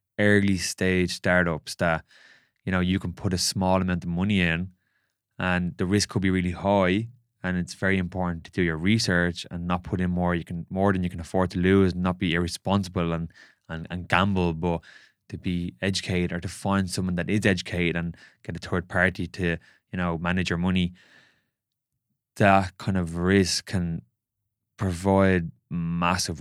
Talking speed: 180 wpm